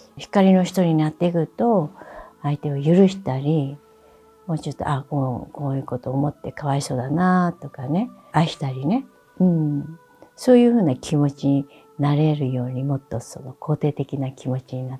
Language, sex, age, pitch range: Japanese, female, 60-79, 135-190 Hz